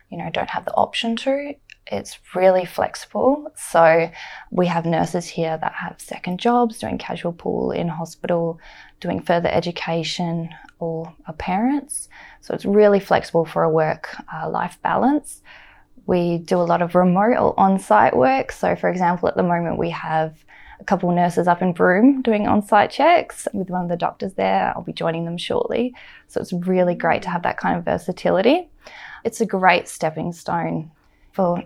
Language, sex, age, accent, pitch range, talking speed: English, female, 20-39, Australian, 165-205 Hz, 175 wpm